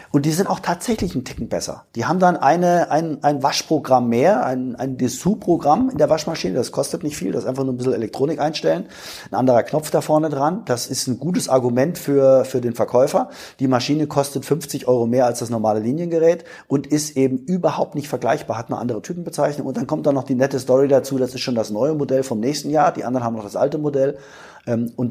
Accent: German